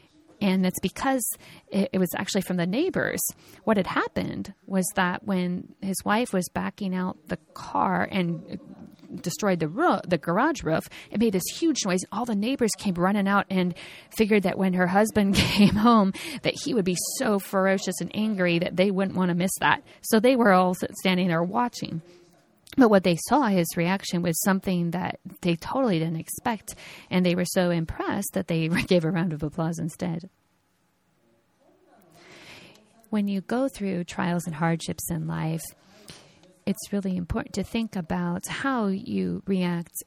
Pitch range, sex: 175-200 Hz, female